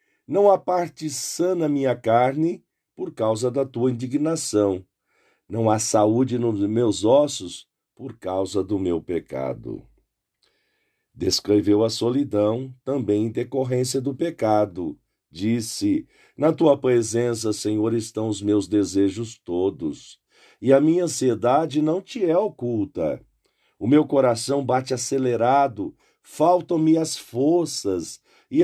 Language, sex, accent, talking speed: Portuguese, male, Brazilian, 125 wpm